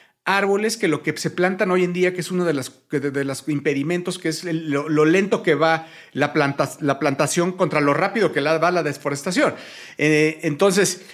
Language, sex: Spanish, male